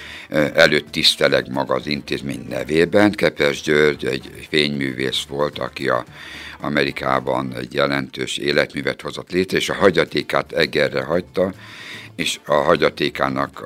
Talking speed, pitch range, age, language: 115 wpm, 70-80 Hz, 60-79, Hungarian